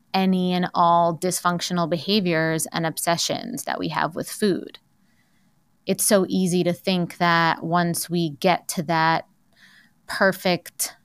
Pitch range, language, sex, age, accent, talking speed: 170-200 Hz, English, female, 20-39, American, 130 wpm